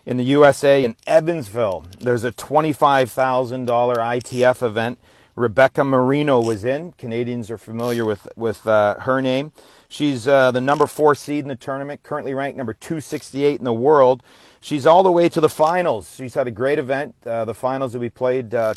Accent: American